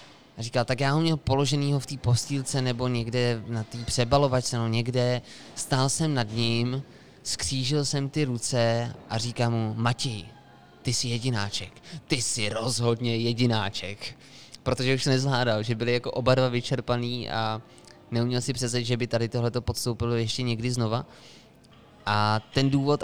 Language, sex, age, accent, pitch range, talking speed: Czech, male, 20-39, native, 115-130 Hz, 160 wpm